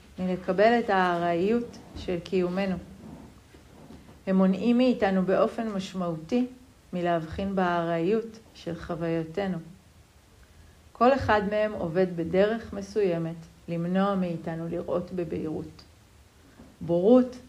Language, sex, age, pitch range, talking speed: Hebrew, female, 40-59, 175-230 Hz, 85 wpm